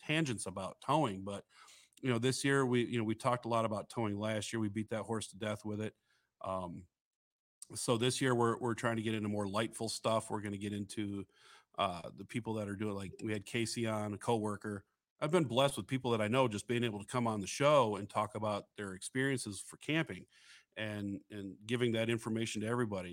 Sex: male